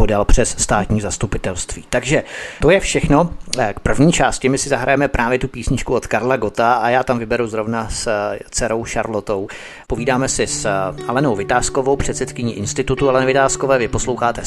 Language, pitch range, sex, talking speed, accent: Czech, 115-135 Hz, male, 160 wpm, native